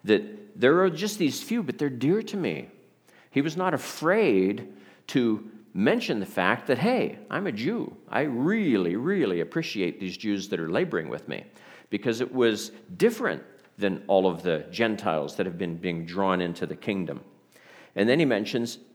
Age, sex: 50-69, male